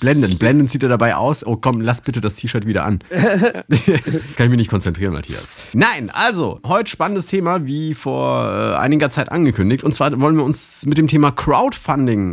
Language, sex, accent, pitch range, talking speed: German, male, German, 95-140 Hz, 190 wpm